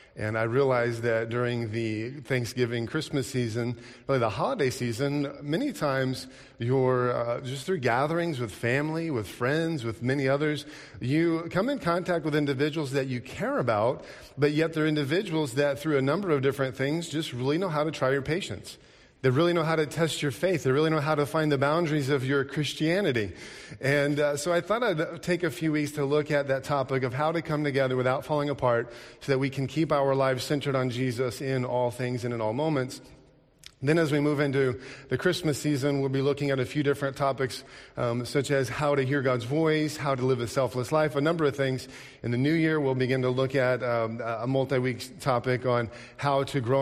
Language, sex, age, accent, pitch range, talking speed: English, male, 40-59, American, 125-150 Hz, 215 wpm